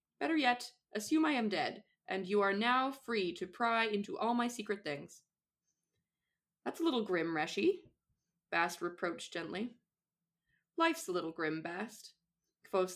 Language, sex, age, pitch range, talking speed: English, female, 20-39, 185-245 Hz, 150 wpm